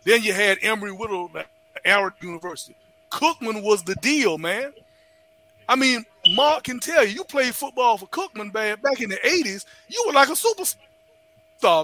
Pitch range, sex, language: 195-320 Hz, male, English